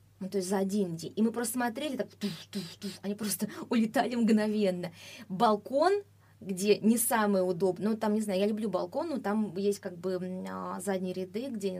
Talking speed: 195 wpm